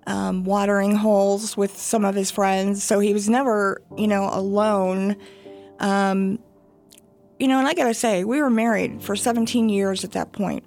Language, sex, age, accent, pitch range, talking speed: English, female, 50-69, American, 200-235 Hz, 180 wpm